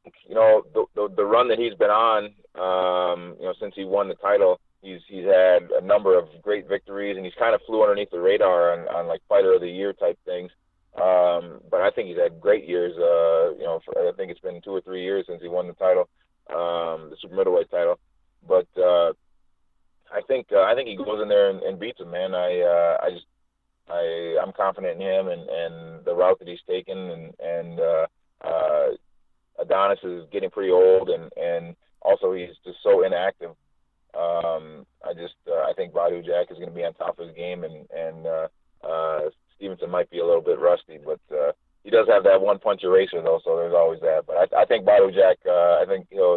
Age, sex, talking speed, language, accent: 30-49, male, 225 wpm, English, American